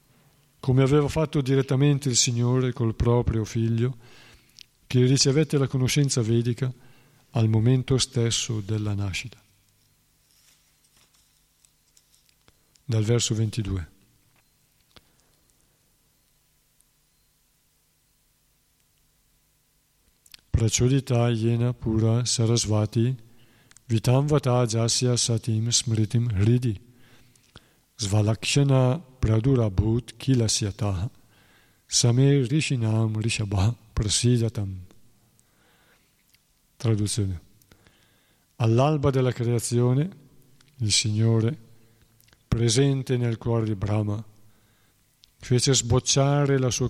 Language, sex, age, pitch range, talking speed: Italian, male, 50-69, 110-130 Hz, 70 wpm